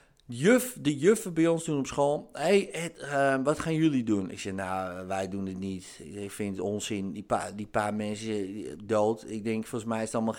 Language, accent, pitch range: Dutch, Dutch, 95-125 Hz